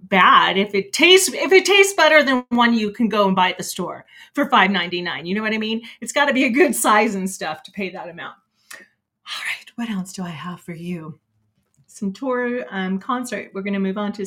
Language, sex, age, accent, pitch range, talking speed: English, female, 30-49, American, 180-230 Hz, 240 wpm